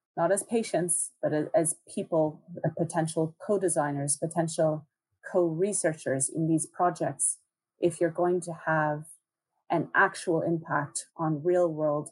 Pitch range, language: 155-175 Hz, English